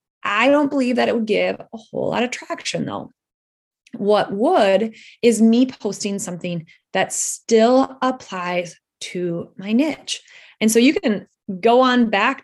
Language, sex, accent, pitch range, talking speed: English, female, American, 190-250 Hz, 155 wpm